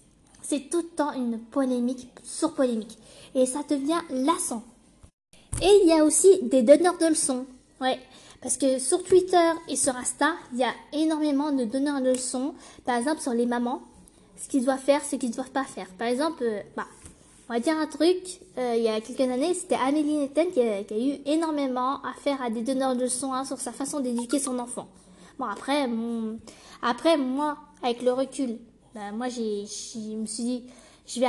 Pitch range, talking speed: 240-300 Hz, 200 wpm